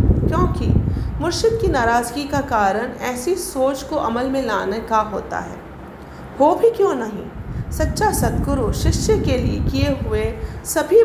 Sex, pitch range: female, 240-330 Hz